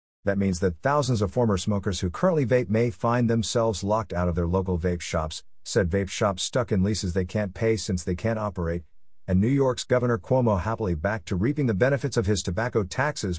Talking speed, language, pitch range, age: 215 wpm, English, 90-115 Hz, 50-69